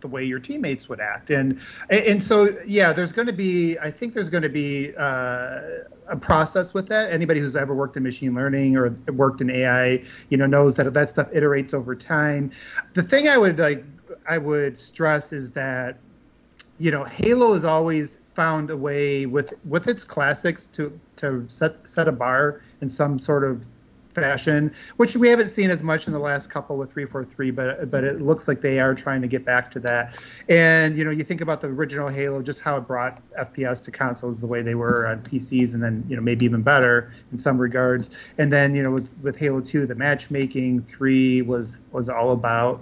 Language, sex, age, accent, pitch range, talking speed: English, male, 30-49, American, 125-160 Hz, 210 wpm